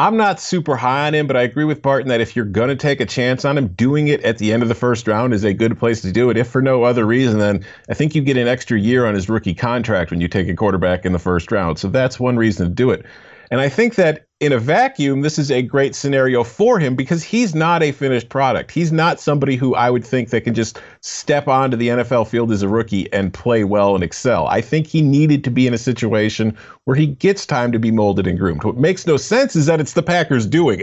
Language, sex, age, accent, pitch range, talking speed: English, male, 40-59, American, 115-150 Hz, 275 wpm